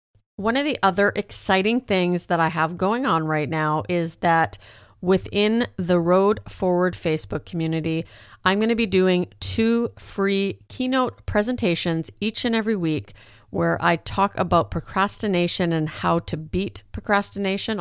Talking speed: 150 wpm